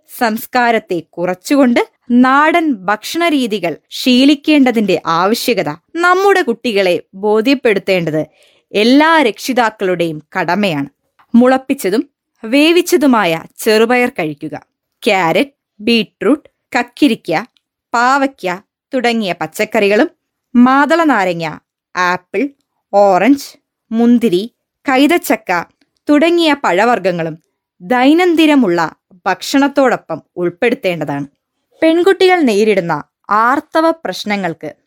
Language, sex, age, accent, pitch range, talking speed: Malayalam, female, 20-39, native, 180-285 Hz, 60 wpm